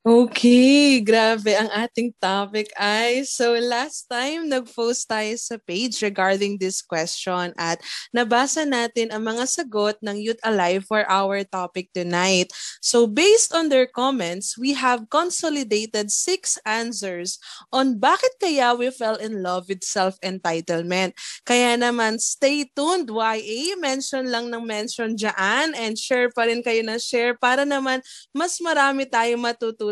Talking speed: 140 wpm